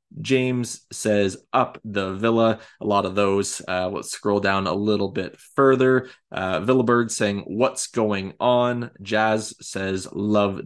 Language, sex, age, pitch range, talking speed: English, male, 20-39, 95-115 Hz, 150 wpm